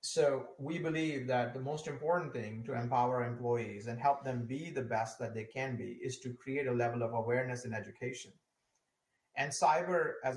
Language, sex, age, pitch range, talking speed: English, male, 30-49, 120-135 Hz, 190 wpm